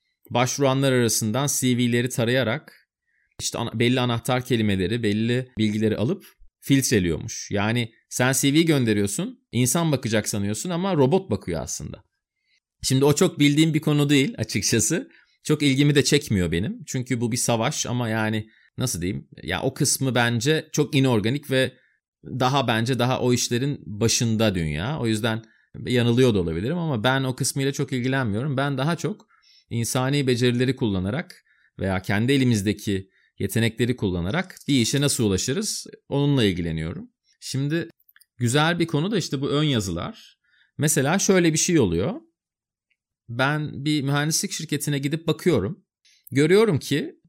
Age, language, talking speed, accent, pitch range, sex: 30-49, Turkish, 135 wpm, native, 110-150 Hz, male